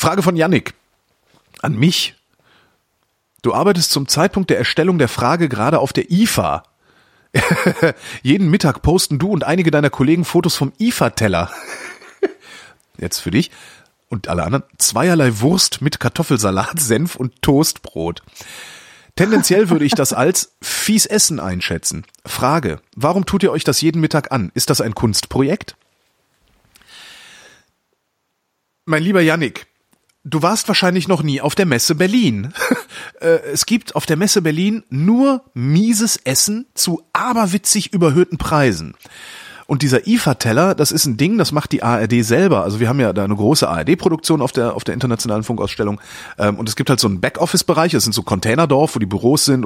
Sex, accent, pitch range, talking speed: male, German, 125-185 Hz, 155 wpm